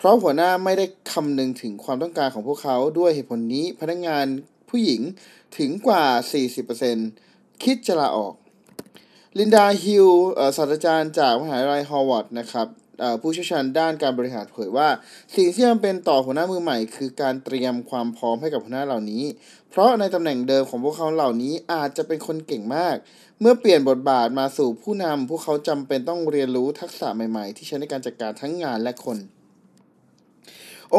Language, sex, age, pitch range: Thai, male, 20-39, 130-175 Hz